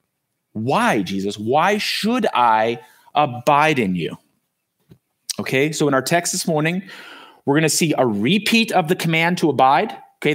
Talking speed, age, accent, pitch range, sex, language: 155 wpm, 30-49, American, 135-180 Hz, male, English